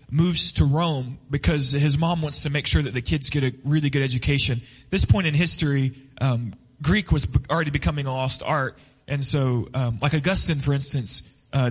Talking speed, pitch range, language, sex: 195 wpm, 130-160 Hz, English, male